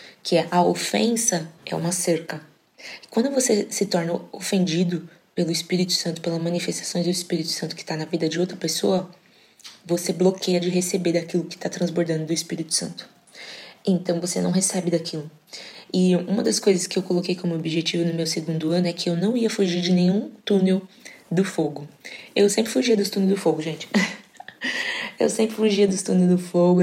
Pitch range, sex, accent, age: 170-205 Hz, female, Brazilian, 20-39